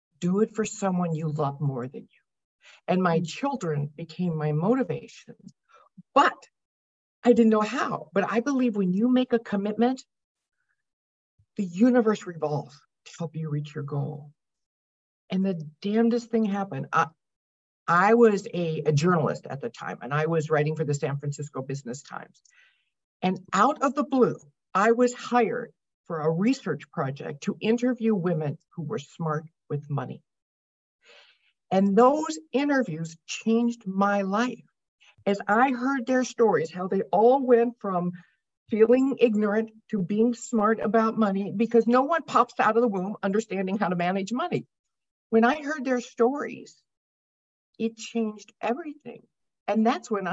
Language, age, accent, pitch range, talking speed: English, 50-69, American, 160-235 Hz, 155 wpm